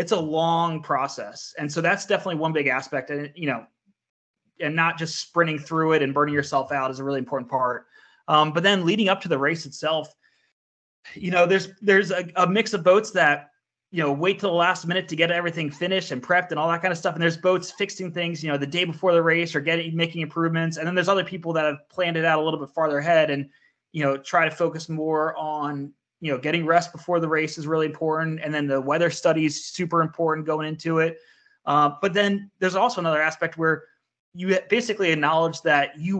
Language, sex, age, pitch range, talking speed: English, male, 20-39, 150-180 Hz, 230 wpm